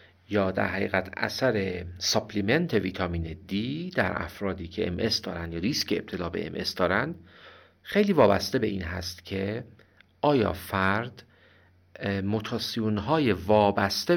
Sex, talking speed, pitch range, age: male, 125 wpm, 90-110 Hz, 50-69